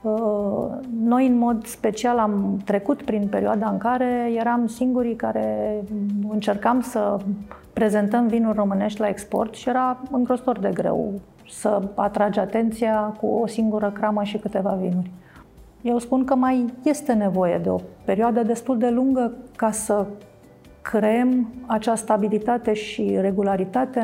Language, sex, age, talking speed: Romanian, female, 40-59, 135 wpm